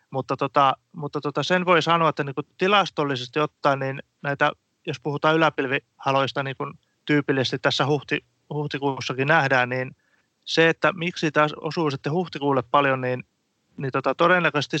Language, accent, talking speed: Finnish, native, 140 wpm